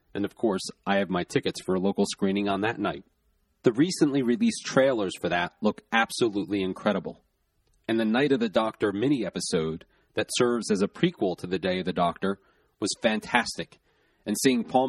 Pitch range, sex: 100-150 Hz, male